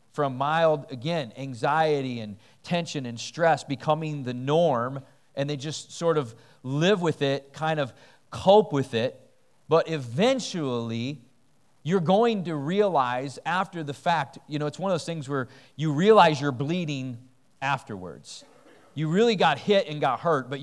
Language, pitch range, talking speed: English, 115-155 Hz, 155 wpm